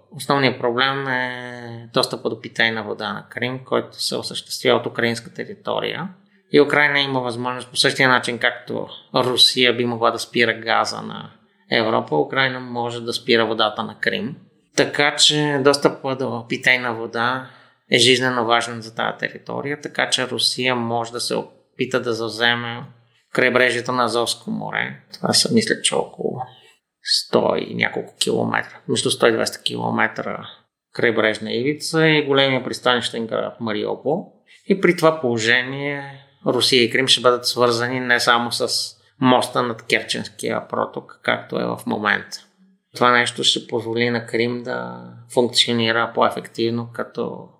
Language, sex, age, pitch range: Bulgarian, male, 30-49, 115-135 Hz